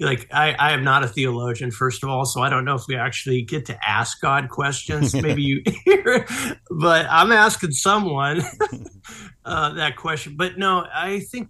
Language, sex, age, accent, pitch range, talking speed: English, male, 50-69, American, 115-145 Hz, 190 wpm